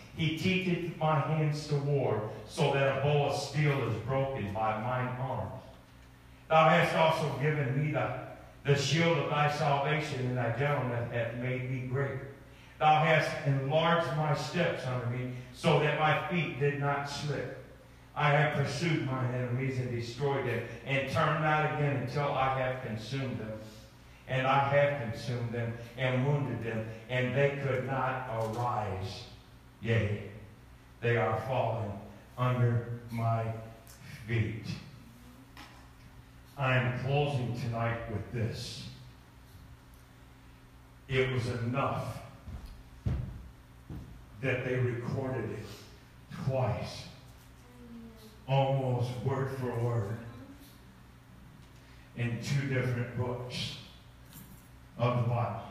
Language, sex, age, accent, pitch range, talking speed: English, male, 50-69, American, 115-140 Hz, 120 wpm